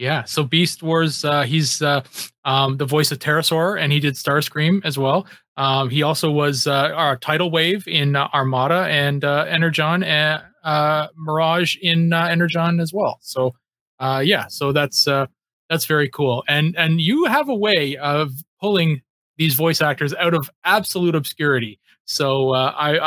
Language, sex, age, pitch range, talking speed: English, male, 30-49, 140-170 Hz, 175 wpm